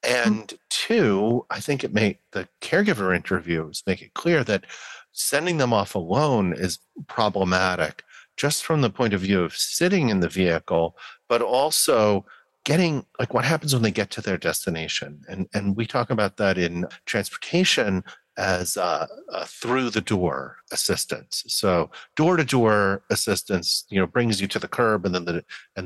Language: English